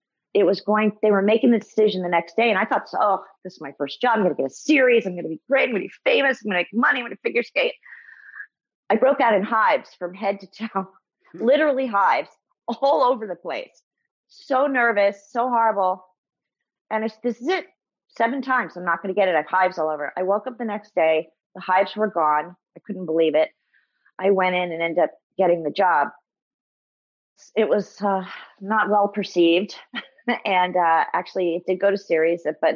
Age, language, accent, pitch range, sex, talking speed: 40-59, English, American, 165-215 Hz, female, 220 wpm